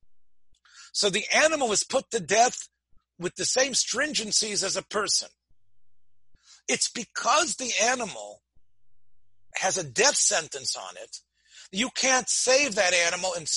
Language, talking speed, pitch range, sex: English, 135 wpm, 165-235 Hz, male